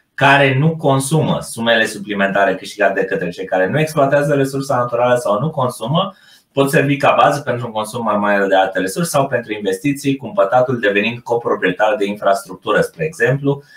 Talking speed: 175 wpm